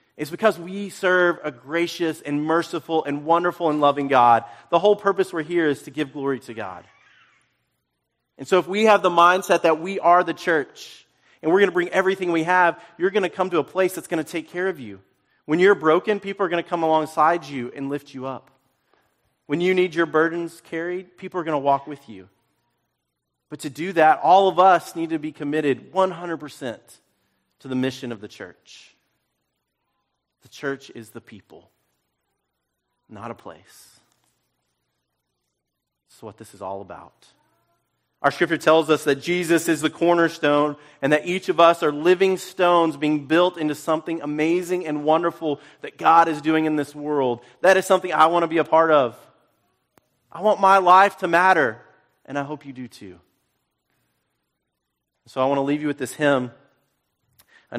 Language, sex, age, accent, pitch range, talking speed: English, male, 40-59, American, 135-175 Hz, 185 wpm